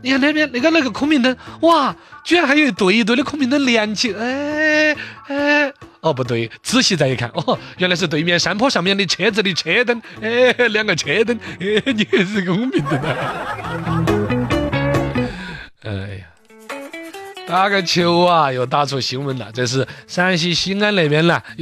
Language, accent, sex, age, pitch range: Chinese, native, male, 30-49, 145-220 Hz